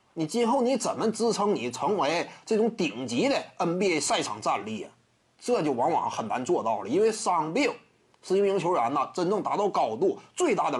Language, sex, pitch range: Chinese, male, 185-260 Hz